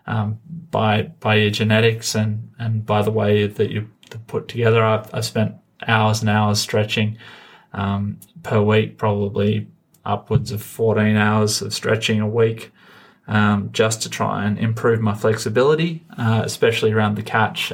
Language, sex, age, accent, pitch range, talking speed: English, male, 20-39, Australian, 110-115 Hz, 155 wpm